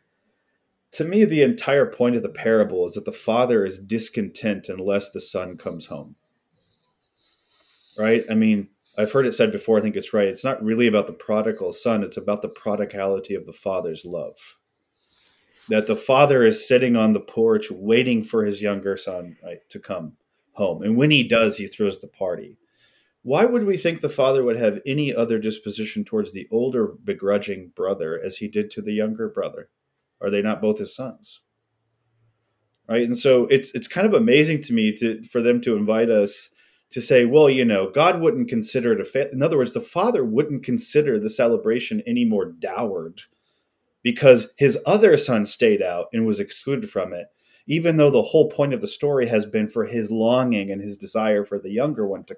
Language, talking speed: English, 195 wpm